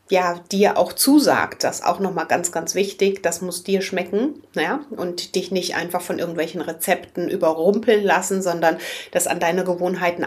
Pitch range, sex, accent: 175-215 Hz, female, German